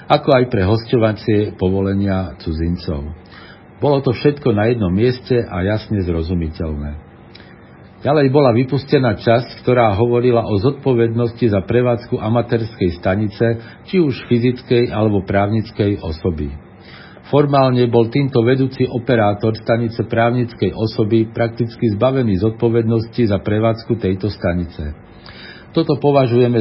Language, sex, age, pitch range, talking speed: Slovak, male, 50-69, 100-125 Hz, 115 wpm